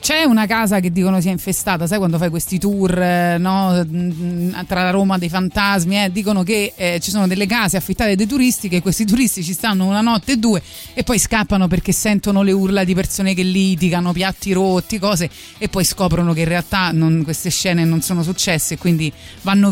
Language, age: Italian, 30-49